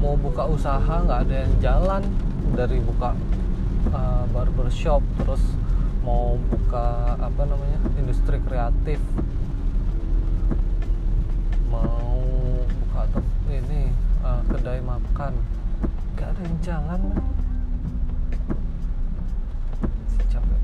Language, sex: Indonesian, male